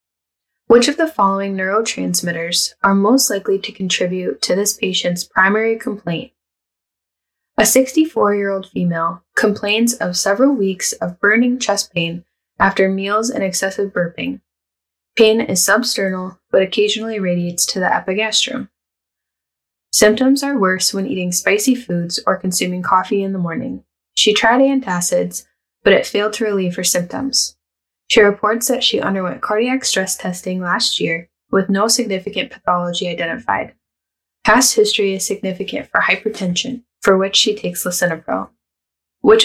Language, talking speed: English, 135 wpm